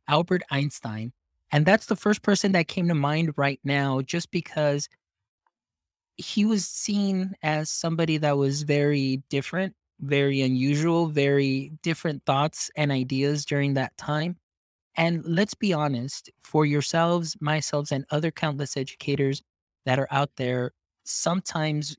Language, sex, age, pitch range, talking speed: English, male, 20-39, 135-160 Hz, 135 wpm